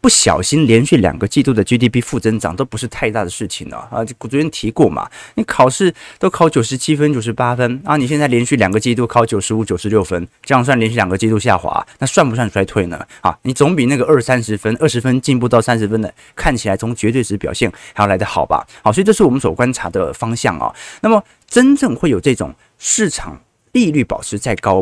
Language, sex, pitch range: Chinese, male, 110-150 Hz